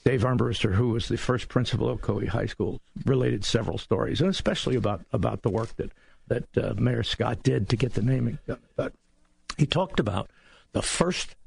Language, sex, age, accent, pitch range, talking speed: English, male, 60-79, American, 110-150 Hz, 185 wpm